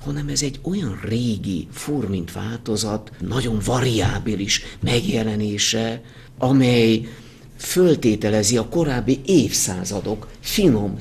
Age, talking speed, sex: 50-69, 95 wpm, male